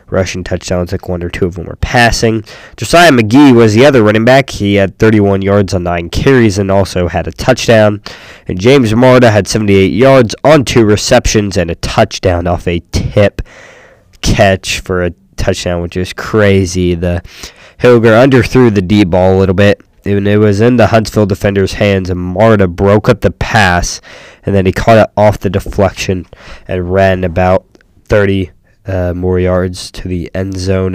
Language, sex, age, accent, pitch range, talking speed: English, male, 20-39, American, 90-110 Hz, 180 wpm